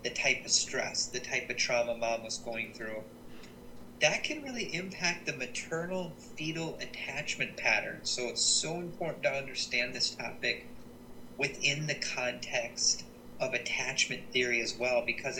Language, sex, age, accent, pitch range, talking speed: English, male, 40-59, American, 115-135 Hz, 150 wpm